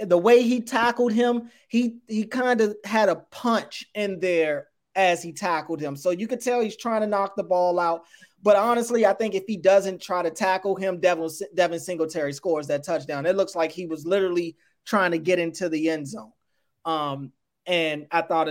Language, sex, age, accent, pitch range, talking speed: English, male, 20-39, American, 160-205 Hz, 205 wpm